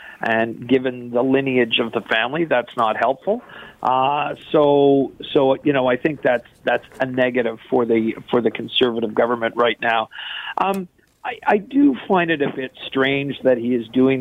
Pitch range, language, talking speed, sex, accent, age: 120-140 Hz, English, 175 wpm, male, American, 50-69